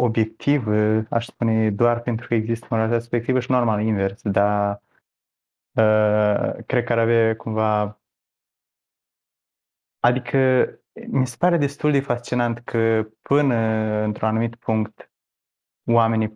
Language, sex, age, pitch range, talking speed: Romanian, male, 20-39, 100-115 Hz, 120 wpm